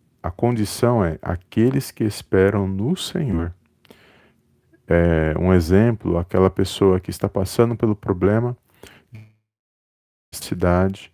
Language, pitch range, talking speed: Portuguese, 90-105 Hz, 95 wpm